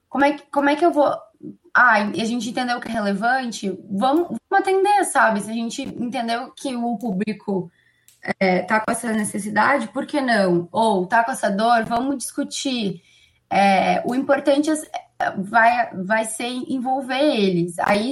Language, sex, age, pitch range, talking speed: Portuguese, female, 10-29, 195-260 Hz, 155 wpm